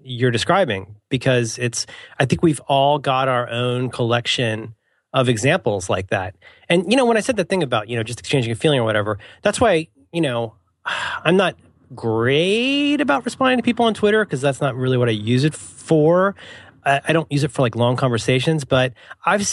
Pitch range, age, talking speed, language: 120-170 Hz, 30-49, 205 wpm, English